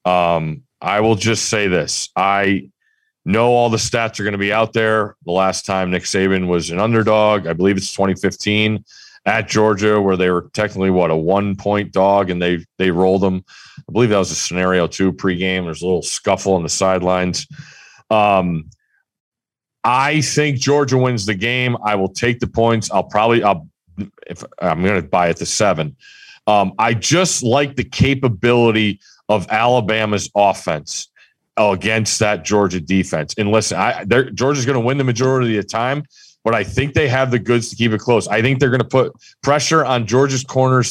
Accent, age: American, 40-59